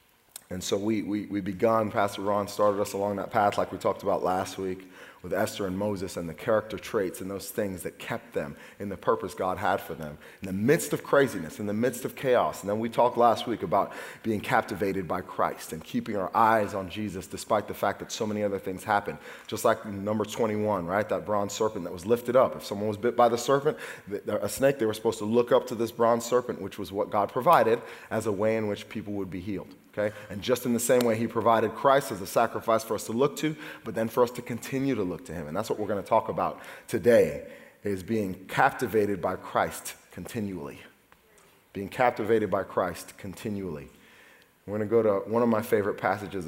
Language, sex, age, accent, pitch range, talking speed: English, male, 30-49, American, 95-115 Hz, 230 wpm